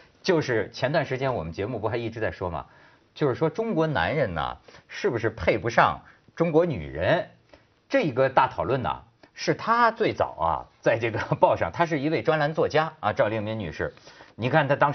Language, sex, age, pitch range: Chinese, male, 50-69, 125-170 Hz